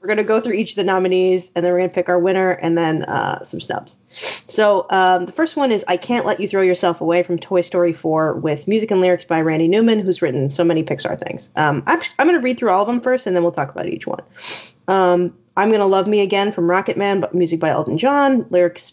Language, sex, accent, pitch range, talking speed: English, female, American, 175-220 Hz, 265 wpm